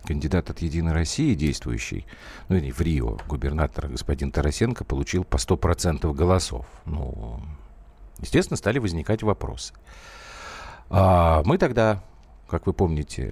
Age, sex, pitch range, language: 50-69, male, 75-120 Hz, Russian